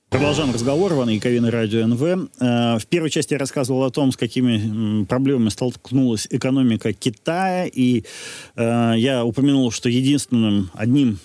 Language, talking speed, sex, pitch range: Ukrainian, 135 wpm, male, 105-135 Hz